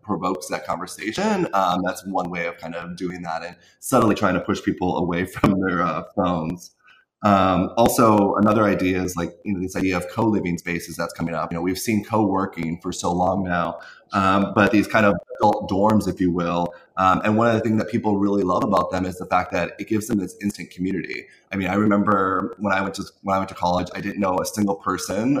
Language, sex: English, male